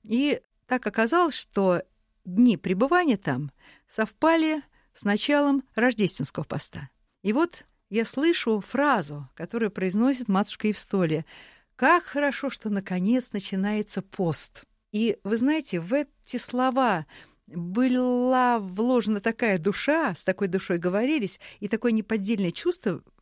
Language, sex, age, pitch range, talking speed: Russian, female, 50-69, 185-250 Hz, 120 wpm